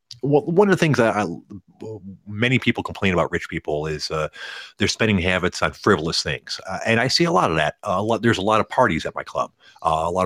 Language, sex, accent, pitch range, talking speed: English, male, American, 95-135 Hz, 235 wpm